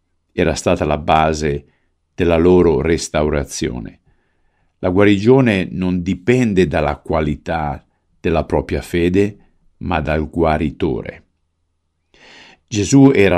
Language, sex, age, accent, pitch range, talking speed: Italian, male, 50-69, native, 75-95 Hz, 95 wpm